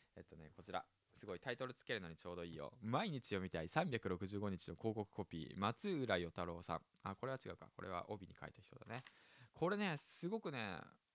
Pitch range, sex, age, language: 90-120 Hz, male, 20-39, Japanese